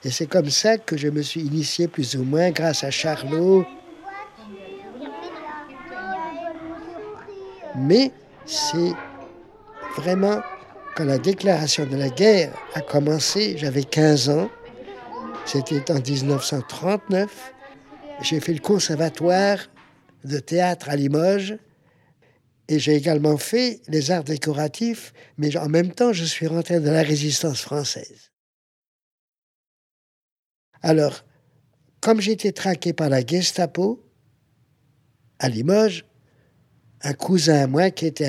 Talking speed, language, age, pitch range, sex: 115 wpm, French, 50-69, 145-195 Hz, male